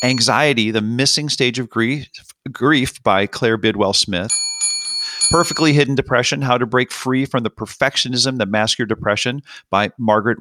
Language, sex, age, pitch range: English, male, 40-59, 110-145 Hz